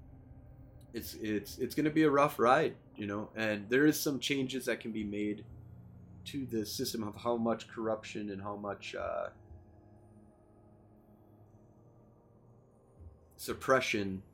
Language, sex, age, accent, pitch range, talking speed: English, male, 30-49, American, 90-115 Hz, 135 wpm